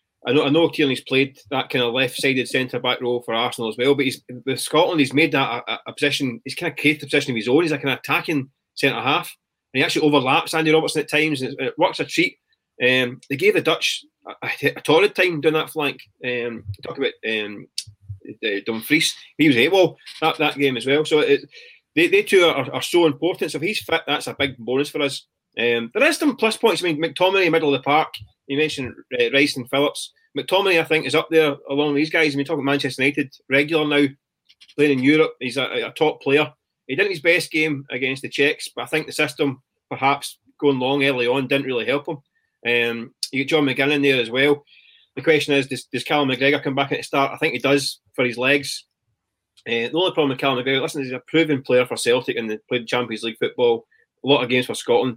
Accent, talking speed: British, 250 wpm